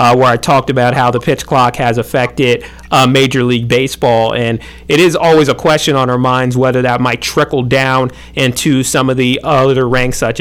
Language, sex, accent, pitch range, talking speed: English, male, American, 120-145 Hz, 210 wpm